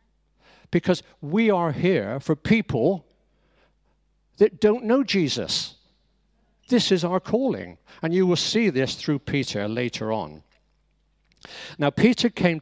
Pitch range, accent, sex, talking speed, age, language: 120-180 Hz, British, male, 125 wpm, 60-79, English